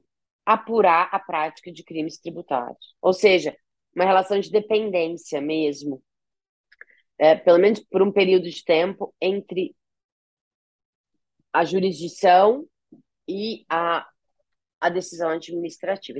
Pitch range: 165-230 Hz